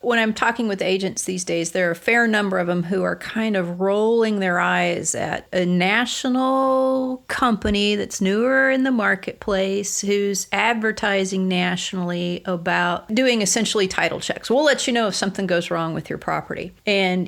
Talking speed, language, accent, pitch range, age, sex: 175 wpm, English, American, 190-250 Hz, 40-59, female